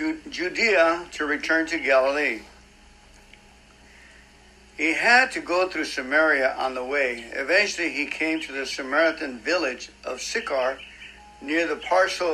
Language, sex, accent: English, male, American